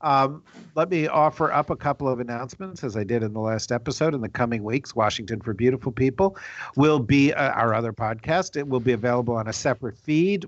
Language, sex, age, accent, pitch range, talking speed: English, male, 50-69, American, 115-145 Hz, 220 wpm